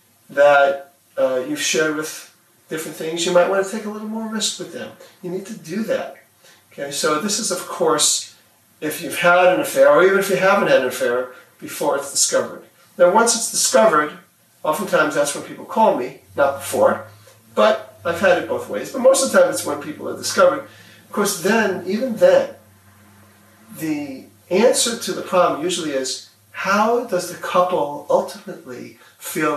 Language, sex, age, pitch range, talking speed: English, male, 40-59, 140-225 Hz, 185 wpm